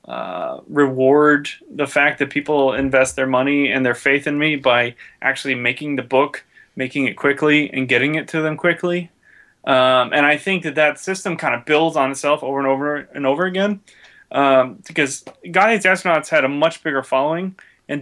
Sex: male